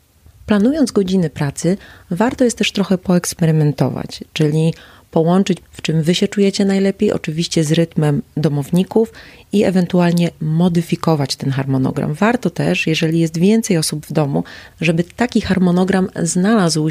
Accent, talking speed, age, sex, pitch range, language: native, 130 wpm, 30-49, female, 140-175 Hz, Polish